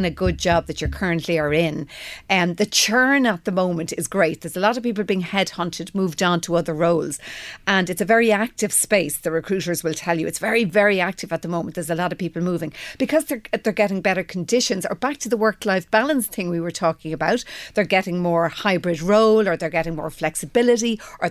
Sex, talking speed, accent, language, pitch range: female, 230 wpm, Irish, English, 165-215 Hz